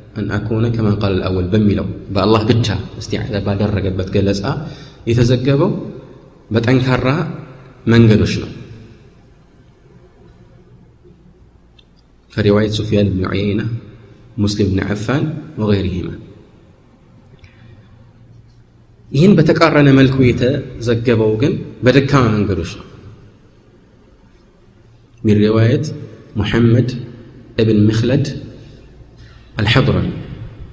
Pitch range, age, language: 105-130 Hz, 30-49, Amharic